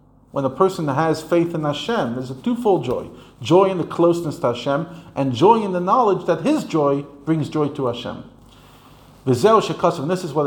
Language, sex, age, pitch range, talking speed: English, male, 40-59, 120-140 Hz, 190 wpm